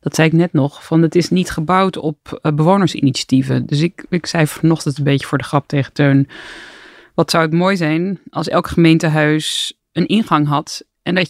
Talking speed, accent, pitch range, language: 200 wpm, Dutch, 145-175 Hz, Dutch